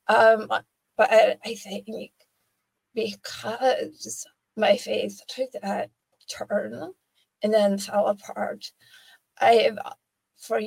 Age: 30-49